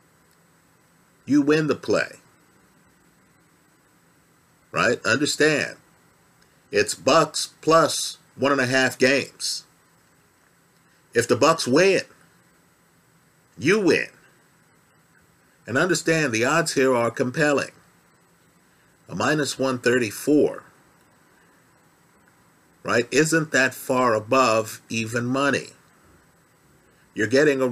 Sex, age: male, 50-69